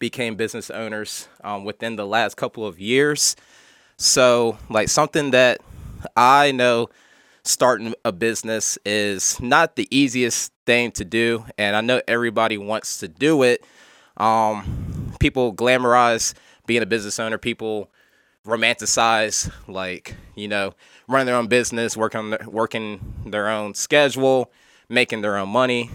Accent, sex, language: American, male, English